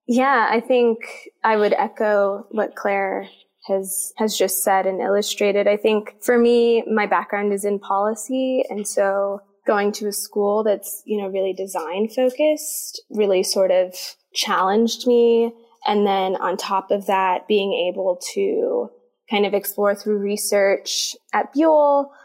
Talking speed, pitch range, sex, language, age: 150 wpm, 195-230 Hz, female, English, 20-39